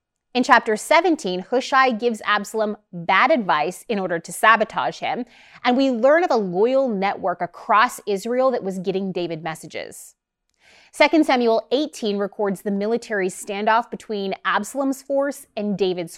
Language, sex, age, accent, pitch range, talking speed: English, female, 20-39, American, 195-255 Hz, 145 wpm